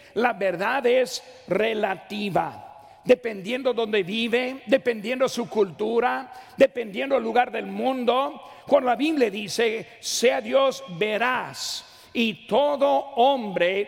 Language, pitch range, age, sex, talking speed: Spanish, 205-260 Hz, 50-69, male, 110 wpm